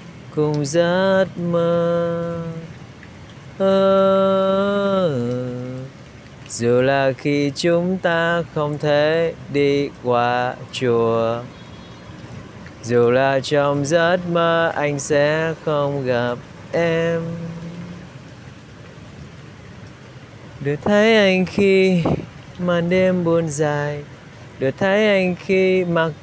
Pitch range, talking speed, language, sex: 135-180 Hz, 80 wpm, Vietnamese, male